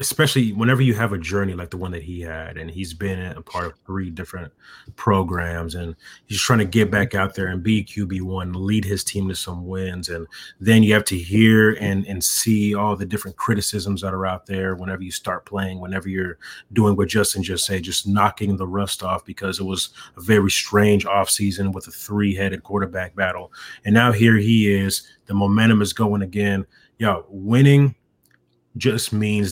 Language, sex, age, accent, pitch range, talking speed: English, male, 30-49, American, 95-105 Hz, 205 wpm